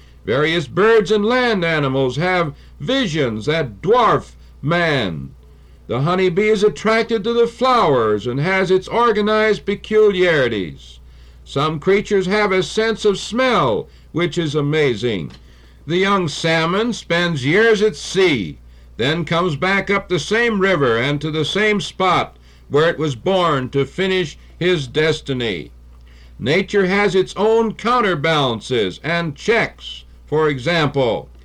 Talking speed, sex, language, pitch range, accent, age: 130 wpm, male, English, 140-200 Hz, American, 60-79